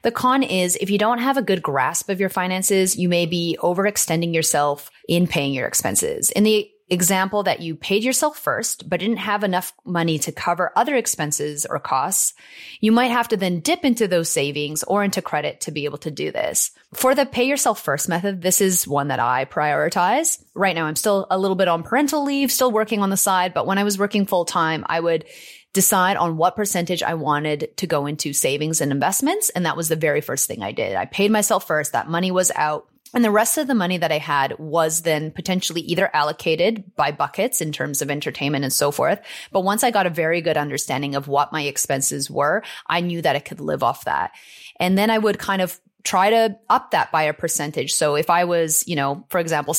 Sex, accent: female, American